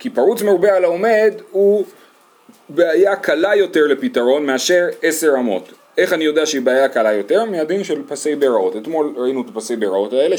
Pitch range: 150-225 Hz